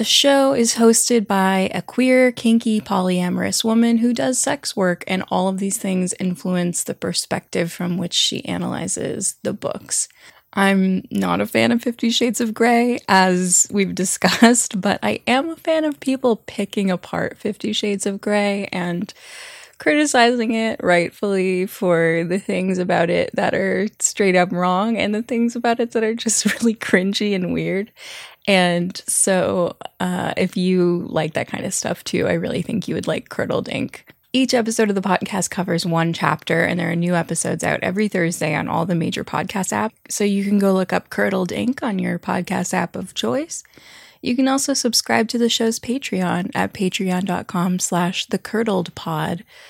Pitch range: 180-230 Hz